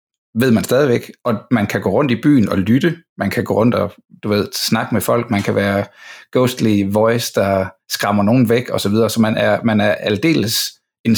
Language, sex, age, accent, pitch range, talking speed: Danish, male, 60-79, native, 105-120 Hz, 210 wpm